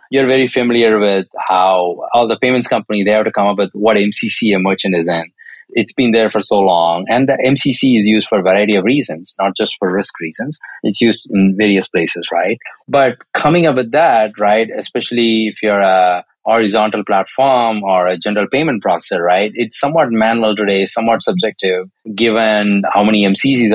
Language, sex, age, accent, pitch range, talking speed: English, male, 30-49, Indian, 100-120 Hz, 190 wpm